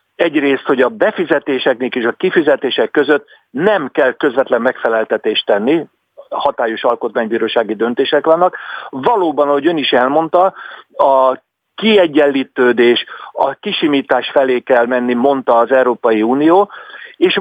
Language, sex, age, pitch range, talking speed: Hungarian, male, 50-69, 125-170 Hz, 115 wpm